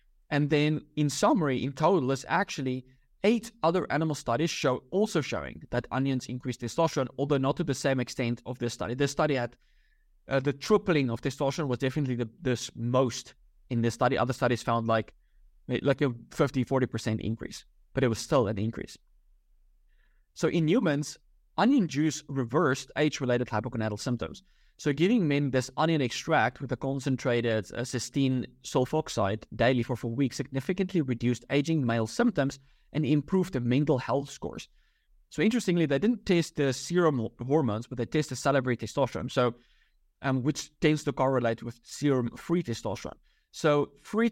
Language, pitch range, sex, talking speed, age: English, 120-150 Hz, male, 160 wpm, 20-39